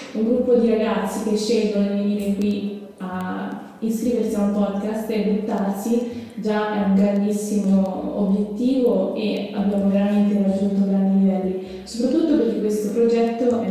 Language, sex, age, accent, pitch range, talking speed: Italian, female, 20-39, native, 200-230 Hz, 140 wpm